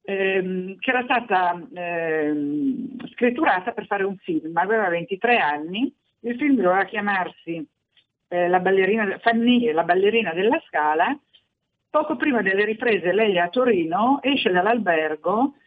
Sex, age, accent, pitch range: female, 50-69, native, 175-230 Hz